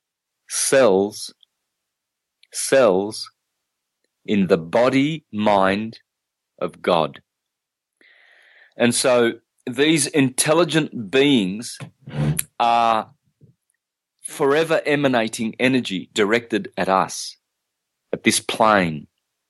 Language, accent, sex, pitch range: English, Australian, male, 105-140 Hz